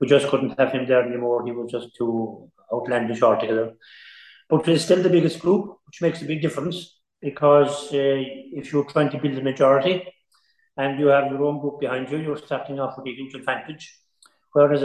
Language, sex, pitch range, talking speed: English, male, 135-165 Hz, 200 wpm